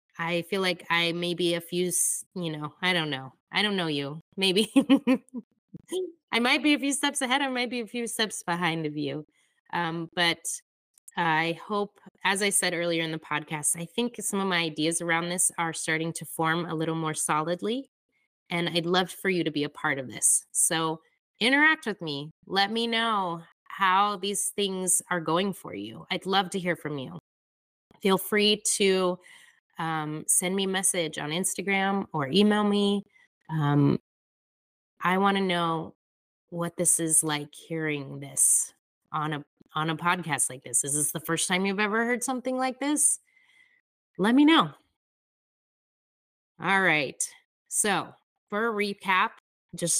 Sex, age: female, 20-39